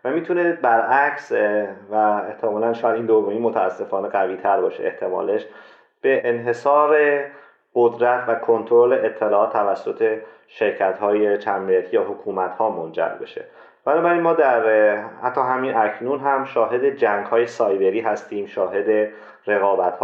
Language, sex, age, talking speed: Persian, male, 30-49, 125 wpm